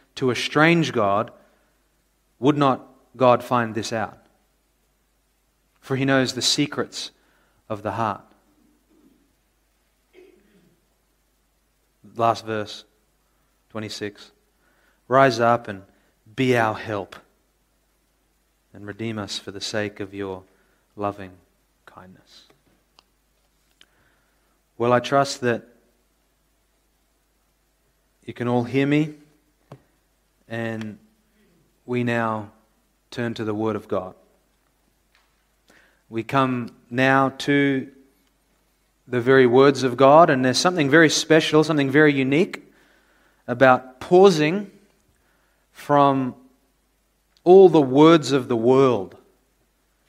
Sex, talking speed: male, 95 wpm